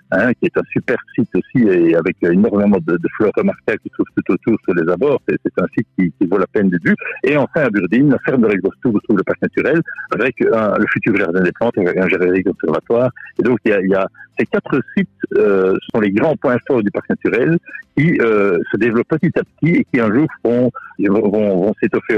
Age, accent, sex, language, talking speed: 60-79, French, male, French, 245 wpm